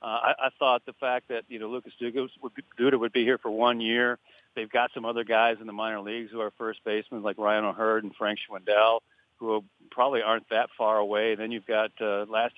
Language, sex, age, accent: English, male, 40-59, American